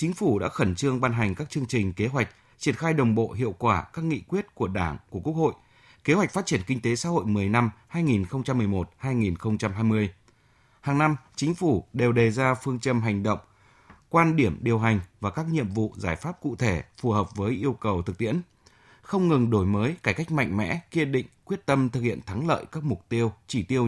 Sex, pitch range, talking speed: male, 105-140 Hz, 220 wpm